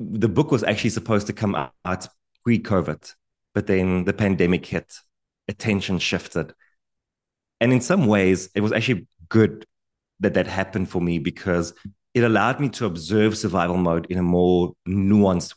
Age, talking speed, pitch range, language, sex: 30-49, 160 wpm, 90-105 Hz, English, male